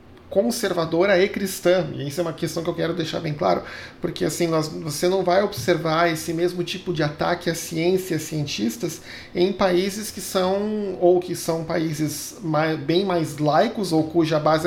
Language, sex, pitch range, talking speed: Portuguese, male, 155-195 Hz, 185 wpm